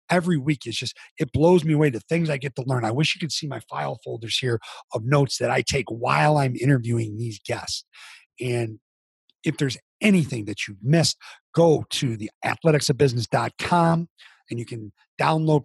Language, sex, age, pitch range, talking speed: English, male, 40-59, 125-165 Hz, 190 wpm